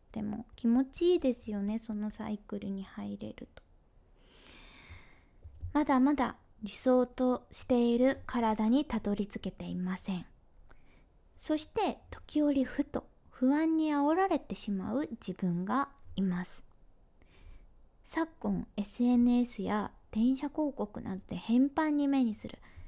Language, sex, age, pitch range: Japanese, female, 20-39, 185-255 Hz